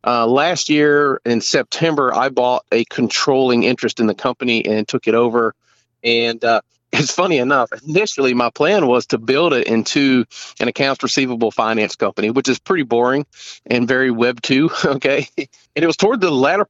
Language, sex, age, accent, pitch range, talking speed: English, male, 40-59, American, 125-160 Hz, 180 wpm